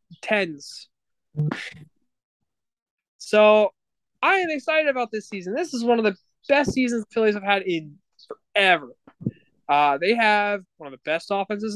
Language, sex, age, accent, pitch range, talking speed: English, male, 20-39, American, 150-240 Hz, 150 wpm